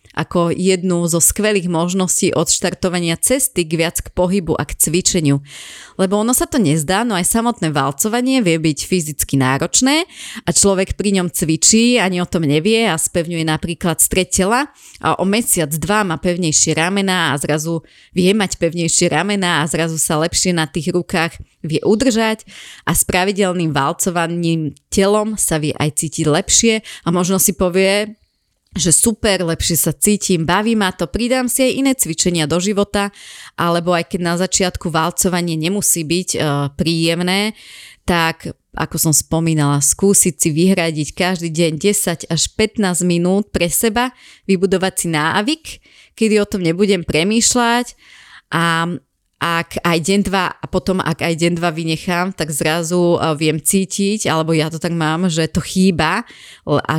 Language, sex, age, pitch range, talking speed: Slovak, female, 30-49, 165-200 Hz, 160 wpm